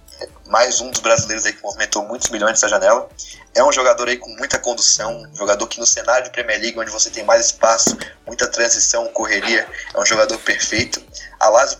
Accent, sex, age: Brazilian, male, 20-39